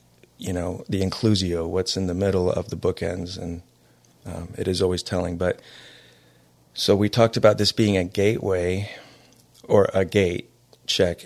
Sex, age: male, 40-59